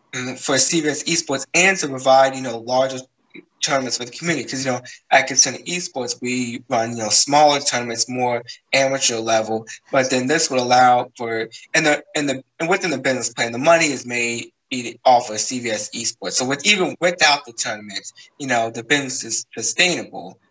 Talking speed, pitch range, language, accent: 185 wpm, 120-145 Hz, English, American